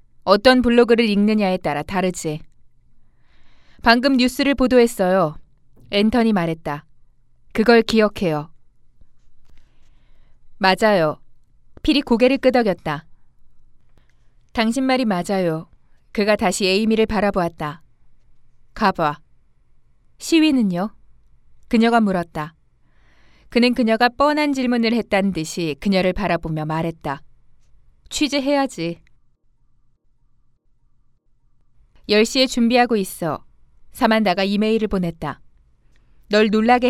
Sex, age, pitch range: female, 20-39, 155-235 Hz